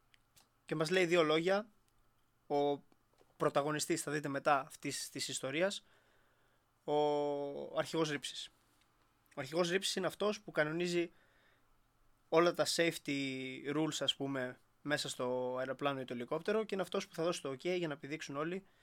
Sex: male